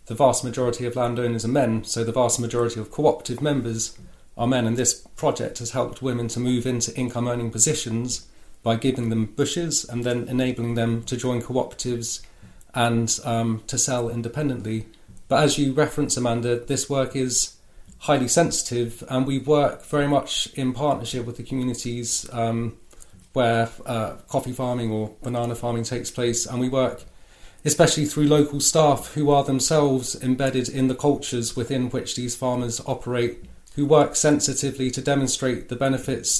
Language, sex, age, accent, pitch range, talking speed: English, male, 40-59, British, 120-130 Hz, 165 wpm